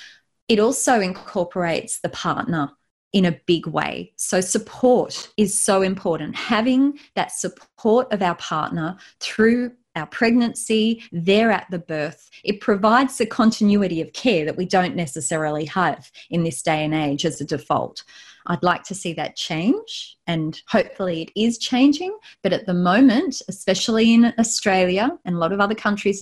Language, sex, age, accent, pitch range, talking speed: English, female, 30-49, Australian, 165-215 Hz, 160 wpm